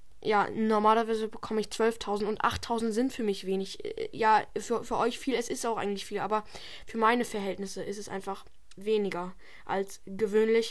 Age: 10-29